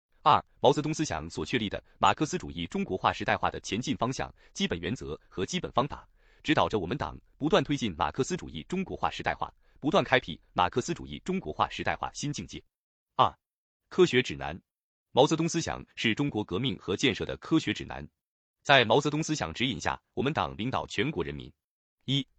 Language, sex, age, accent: Chinese, male, 30-49, native